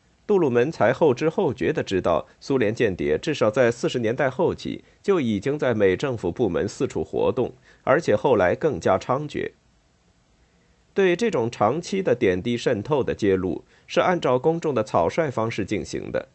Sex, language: male, Chinese